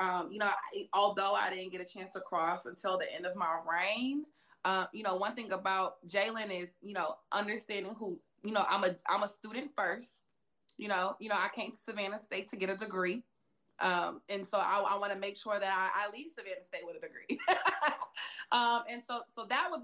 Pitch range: 190-235 Hz